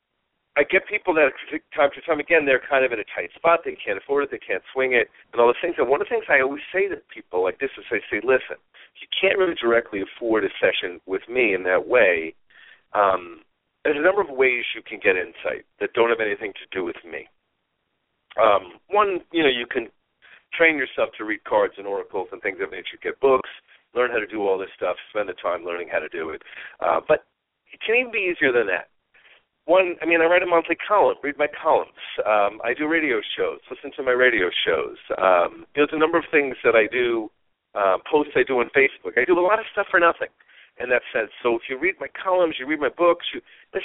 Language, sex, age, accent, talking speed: English, male, 50-69, American, 240 wpm